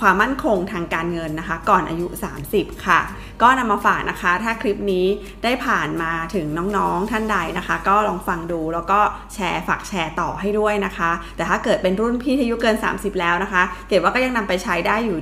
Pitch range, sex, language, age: 175-220 Hz, female, Thai, 20-39